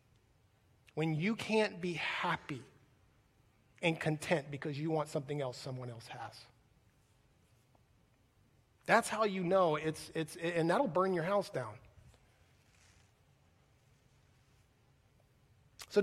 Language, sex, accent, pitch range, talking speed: English, male, American, 125-165 Hz, 105 wpm